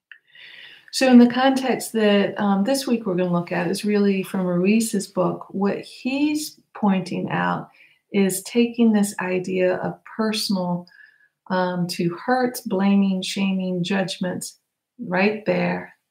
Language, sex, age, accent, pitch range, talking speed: English, female, 40-59, American, 185-240 Hz, 135 wpm